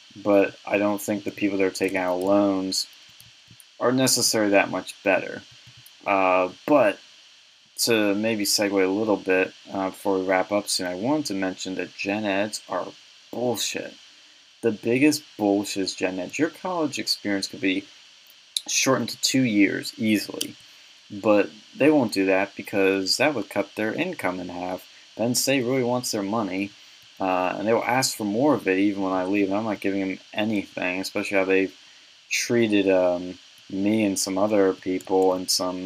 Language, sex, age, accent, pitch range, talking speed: English, male, 20-39, American, 95-110 Hz, 175 wpm